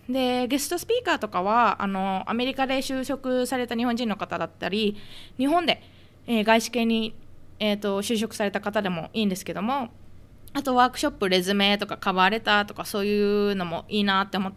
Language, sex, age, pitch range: Japanese, female, 20-39, 200-285 Hz